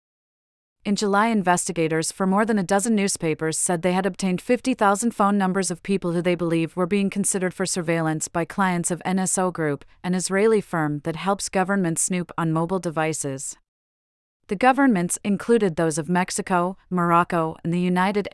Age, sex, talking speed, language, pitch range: 30-49, female, 165 wpm, English, 165-200 Hz